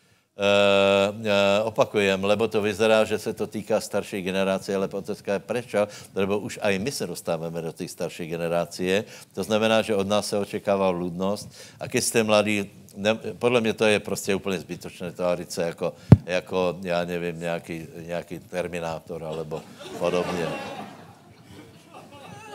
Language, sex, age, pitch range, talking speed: Slovak, male, 60-79, 100-145 Hz, 150 wpm